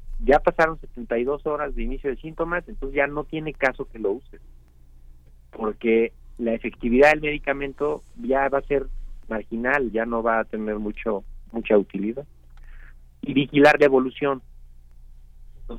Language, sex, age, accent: Spanish, male, 40-59, Mexican